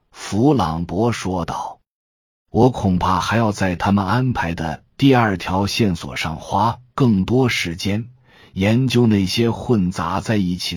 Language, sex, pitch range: Chinese, male, 90-115 Hz